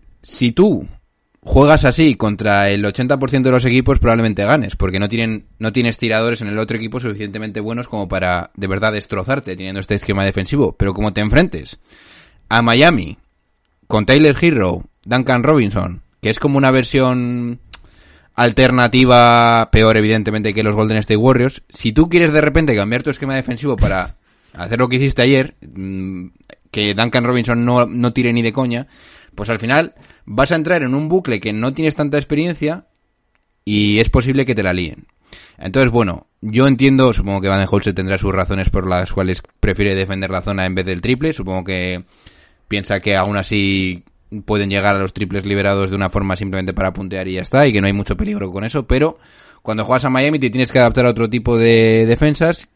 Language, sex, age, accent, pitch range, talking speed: Spanish, male, 20-39, Spanish, 95-125 Hz, 190 wpm